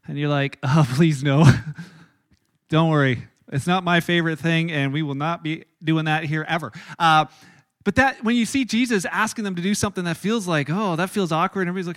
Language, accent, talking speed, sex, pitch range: English, American, 215 wpm, male, 175-220 Hz